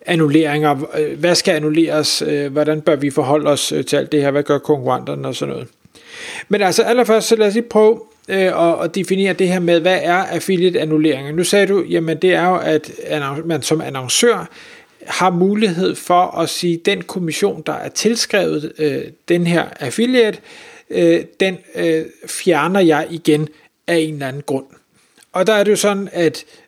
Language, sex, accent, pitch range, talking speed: Danish, male, native, 155-200 Hz, 170 wpm